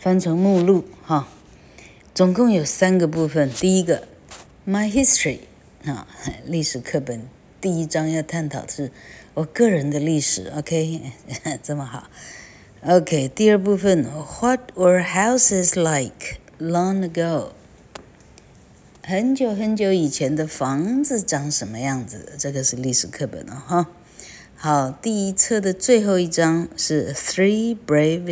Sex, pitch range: female, 140-180 Hz